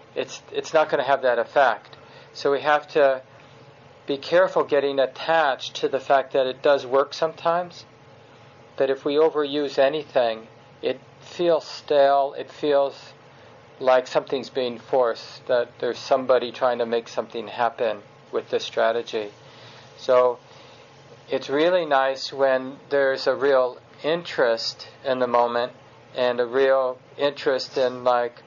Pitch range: 120-145 Hz